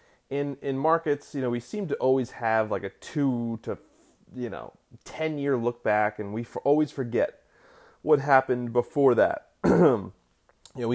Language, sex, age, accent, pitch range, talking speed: English, male, 30-49, American, 105-125 Hz, 170 wpm